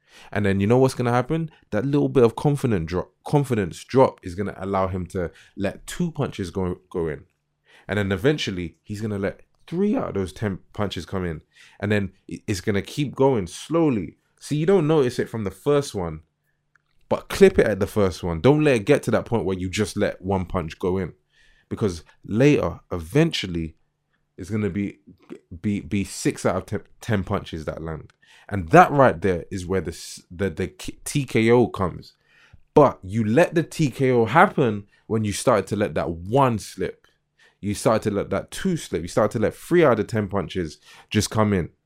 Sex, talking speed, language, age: male, 200 wpm, English, 20-39